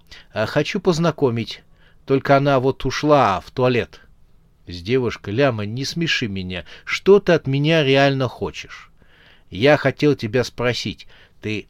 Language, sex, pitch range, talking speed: Russian, male, 105-145 Hz, 135 wpm